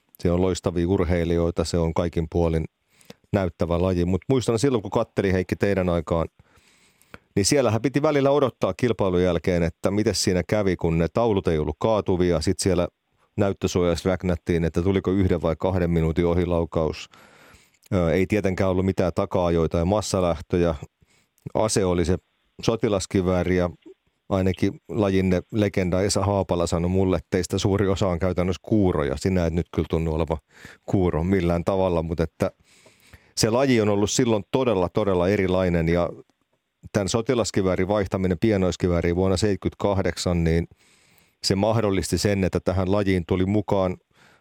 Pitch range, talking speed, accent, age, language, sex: 85-100 Hz, 145 wpm, native, 30-49, Finnish, male